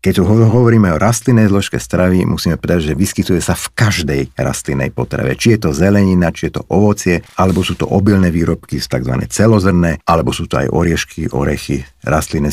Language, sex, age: Slovak, male, 50-69